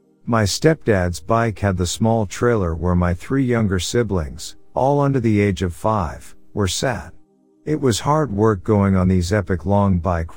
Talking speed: 175 wpm